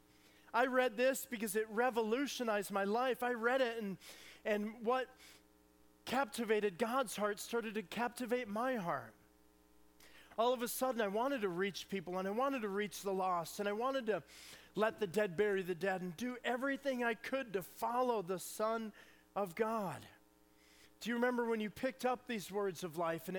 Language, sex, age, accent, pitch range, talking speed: English, male, 40-59, American, 135-220 Hz, 180 wpm